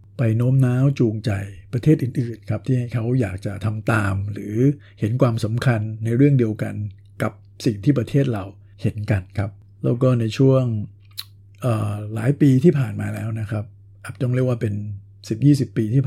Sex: male